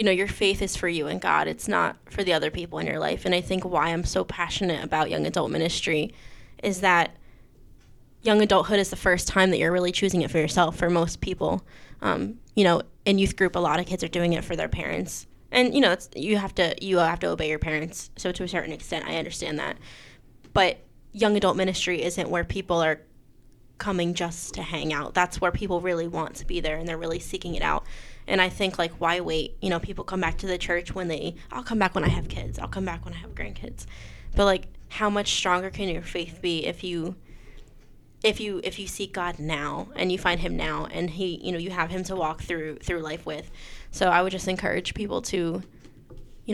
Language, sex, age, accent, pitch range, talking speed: English, female, 10-29, American, 160-185 Hz, 235 wpm